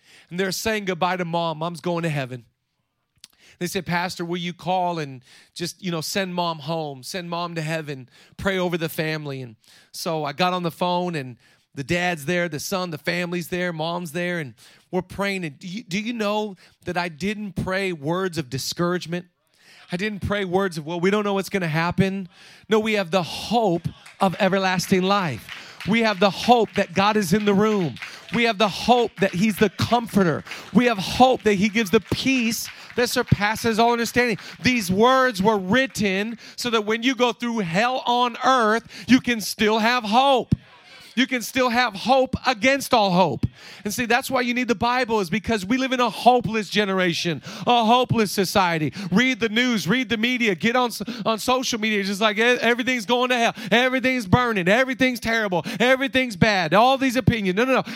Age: 40-59